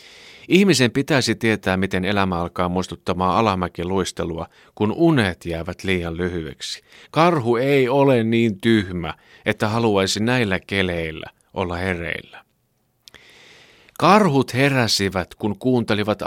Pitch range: 90-120 Hz